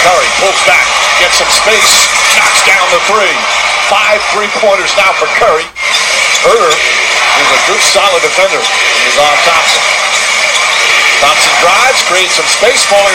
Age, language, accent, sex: 50-69, English, American, male